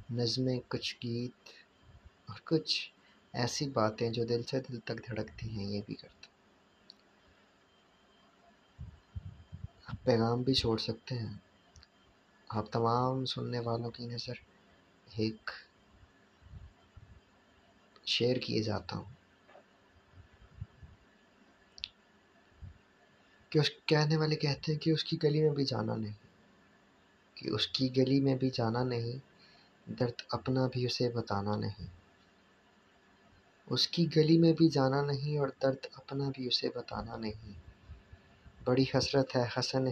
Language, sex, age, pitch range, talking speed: Urdu, male, 20-39, 105-135 Hz, 120 wpm